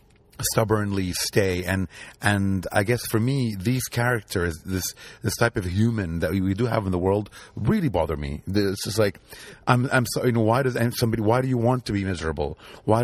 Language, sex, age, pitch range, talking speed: English, male, 30-49, 90-115 Hz, 210 wpm